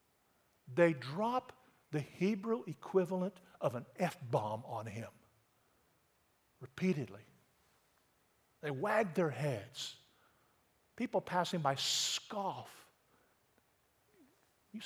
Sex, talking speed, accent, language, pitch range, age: male, 80 wpm, American, English, 135-220 Hz, 50-69